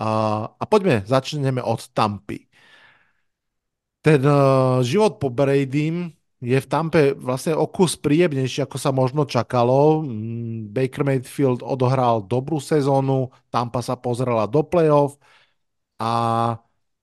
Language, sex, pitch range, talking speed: Slovak, male, 120-145 Hz, 100 wpm